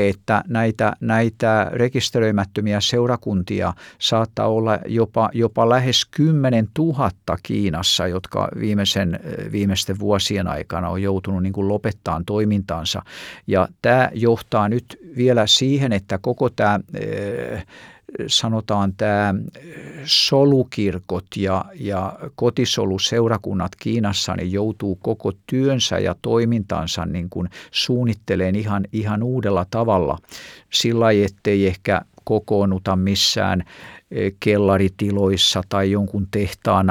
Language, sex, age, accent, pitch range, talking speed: Finnish, male, 50-69, native, 95-115 Hz, 100 wpm